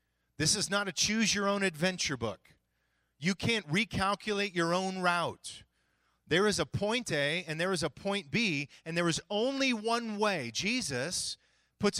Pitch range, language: 120-180 Hz, English